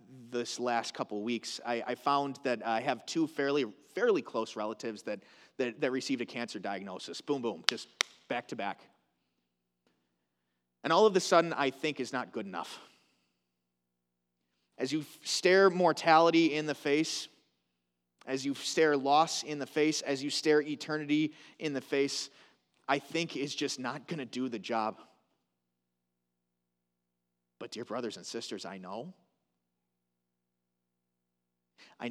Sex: male